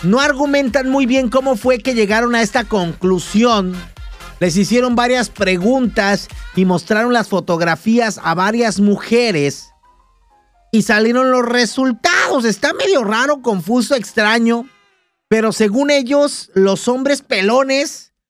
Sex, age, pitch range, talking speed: male, 50-69, 175-255 Hz, 120 wpm